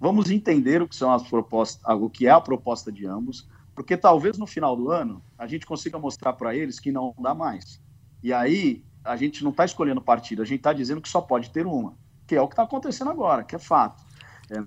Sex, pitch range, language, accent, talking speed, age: male, 120-175 Hz, Portuguese, Brazilian, 235 wpm, 50-69